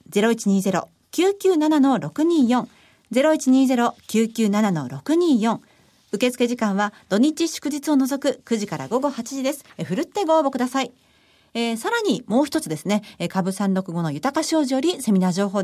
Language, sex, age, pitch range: Japanese, female, 40-59, 210-305 Hz